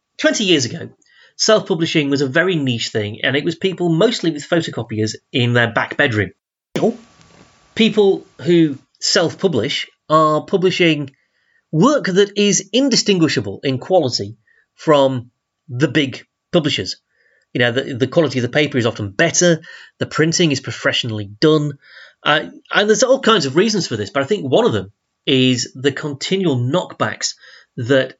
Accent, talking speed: British, 150 wpm